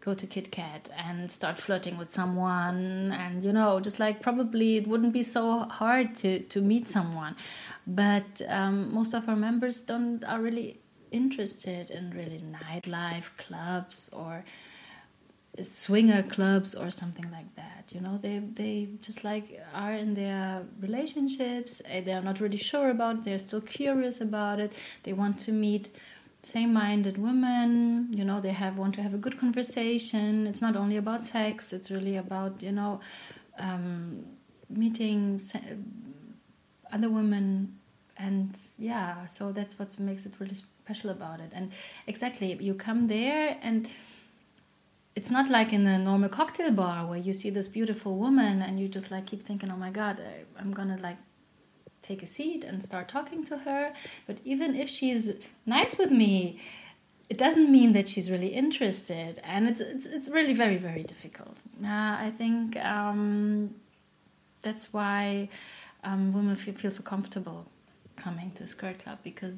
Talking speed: 165 wpm